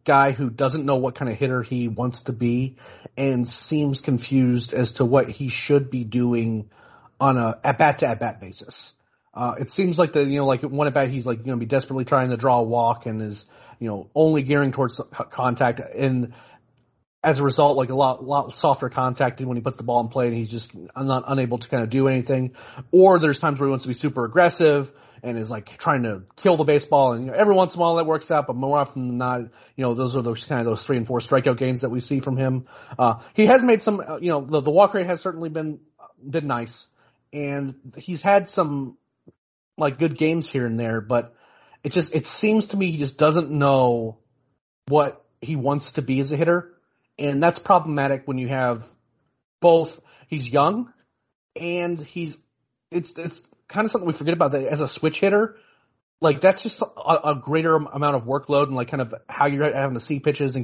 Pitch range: 125-155 Hz